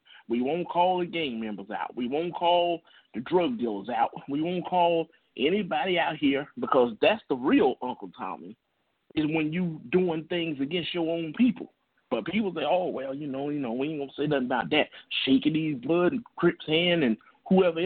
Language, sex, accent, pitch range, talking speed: English, male, American, 145-180 Hz, 200 wpm